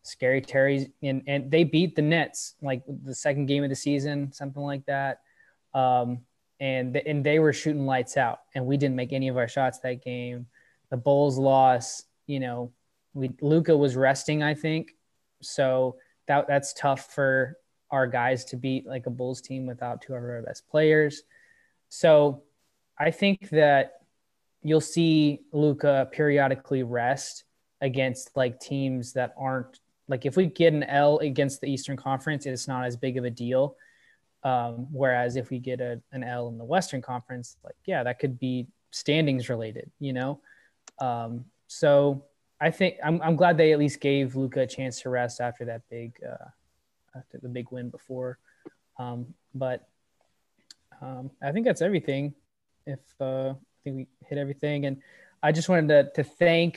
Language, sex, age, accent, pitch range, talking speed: English, male, 20-39, American, 130-145 Hz, 175 wpm